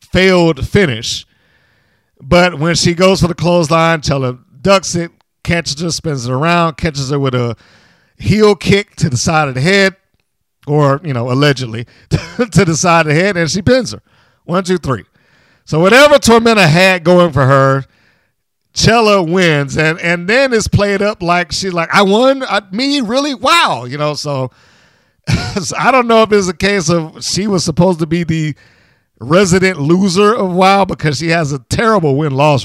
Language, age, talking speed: English, 50-69, 180 wpm